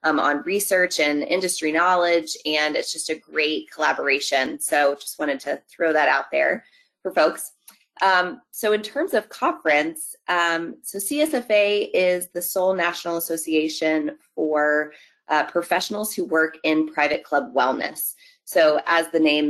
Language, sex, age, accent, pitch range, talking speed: English, female, 20-39, American, 160-210 Hz, 150 wpm